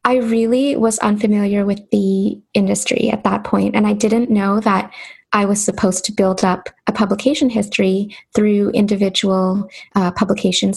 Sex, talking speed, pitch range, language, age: female, 155 wpm, 195-230 Hz, English, 10-29